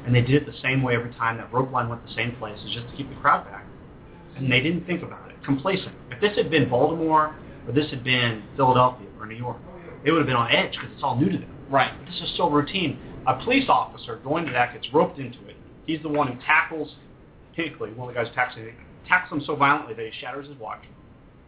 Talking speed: 250 wpm